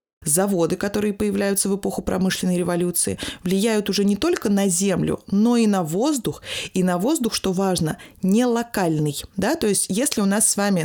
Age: 20-39